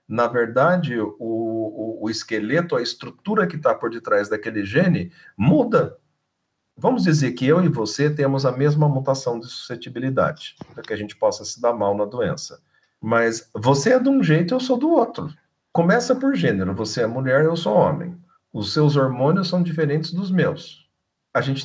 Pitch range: 135-185 Hz